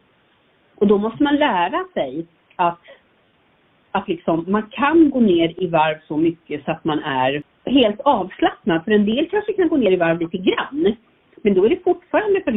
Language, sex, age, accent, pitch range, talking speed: Swedish, female, 40-59, native, 160-215 Hz, 190 wpm